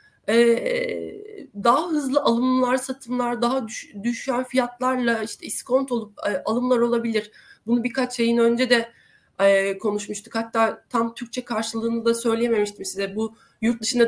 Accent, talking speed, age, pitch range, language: native, 120 wpm, 30-49, 195-255 Hz, Turkish